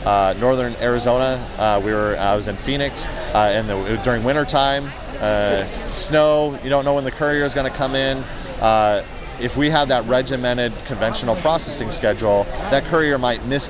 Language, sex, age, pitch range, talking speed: English, male, 30-49, 110-130 Hz, 185 wpm